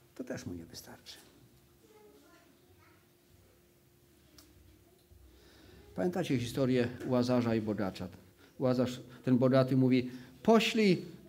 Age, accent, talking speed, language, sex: 40-59, native, 80 wpm, Polish, male